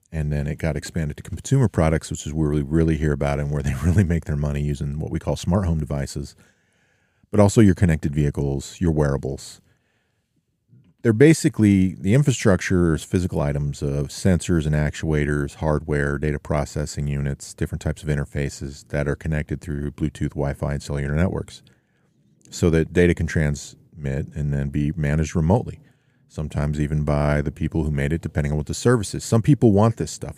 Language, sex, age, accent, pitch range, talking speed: English, male, 40-59, American, 75-95 Hz, 185 wpm